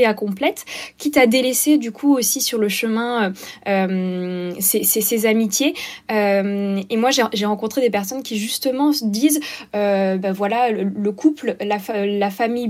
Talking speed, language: 170 wpm, French